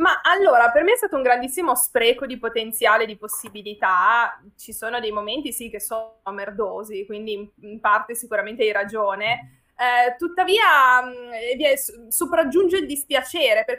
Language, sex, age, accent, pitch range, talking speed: Italian, female, 20-39, native, 220-285 Hz, 150 wpm